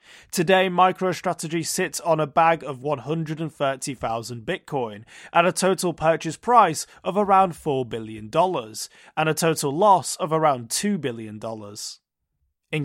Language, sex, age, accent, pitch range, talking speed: English, male, 30-49, British, 140-185 Hz, 125 wpm